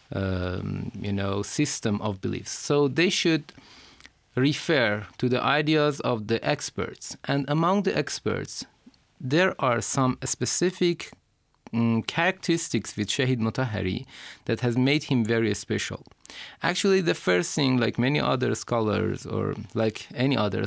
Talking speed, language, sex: 135 wpm, Persian, male